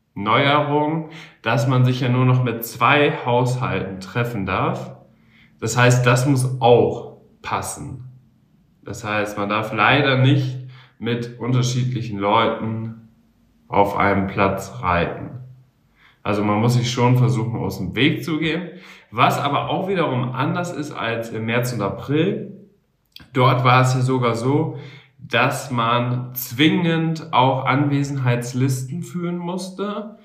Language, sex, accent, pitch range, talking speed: German, male, German, 115-135 Hz, 130 wpm